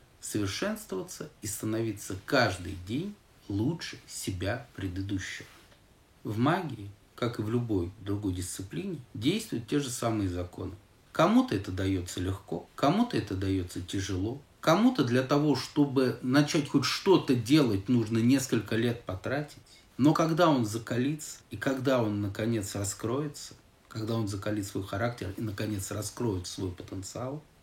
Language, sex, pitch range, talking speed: Russian, male, 100-140 Hz, 130 wpm